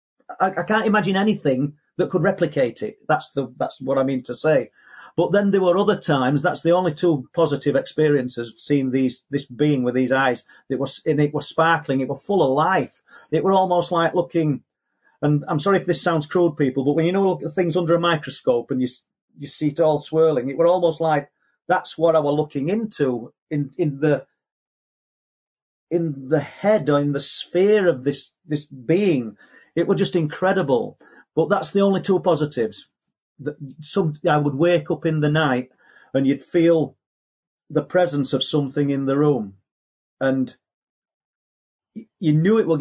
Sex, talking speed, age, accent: male, 195 wpm, 40-59, British